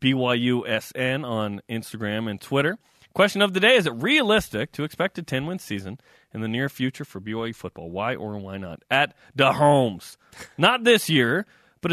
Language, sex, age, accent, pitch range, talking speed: English, male, 30-49, American, 125-175 Hz, 175 wpm